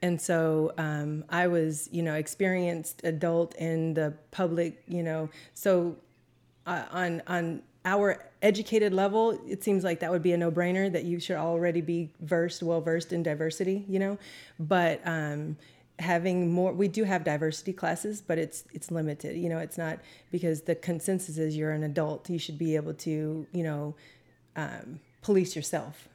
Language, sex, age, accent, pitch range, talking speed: English, female, 30-49, American, 155-180 Hz, 175 wpm